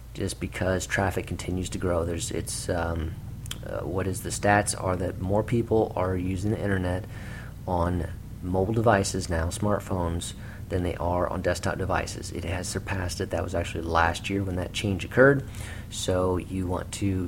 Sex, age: male, 40-59